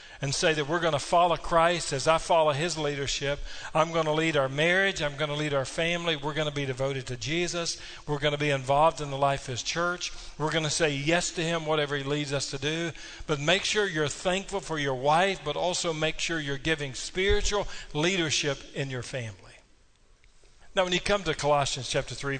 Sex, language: male, English